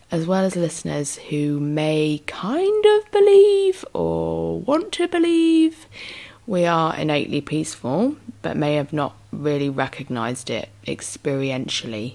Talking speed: 125 wpm